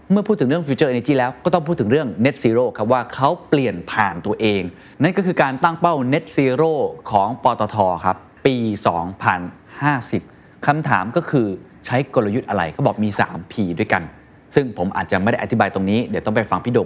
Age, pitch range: 20-39, 100-135 Hz